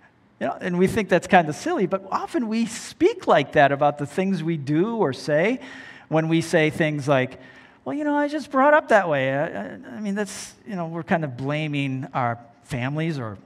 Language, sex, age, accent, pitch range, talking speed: English, male, 50-69, American, 140-195 Hz, 225 wpm